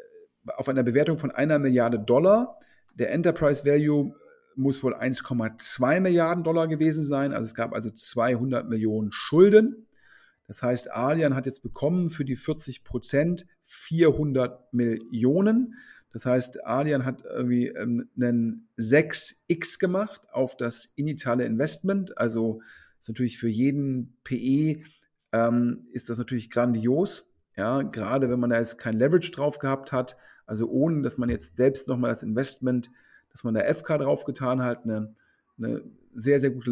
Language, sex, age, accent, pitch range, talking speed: German, male, 40-59, German, 125-160 Hz, 145 wpm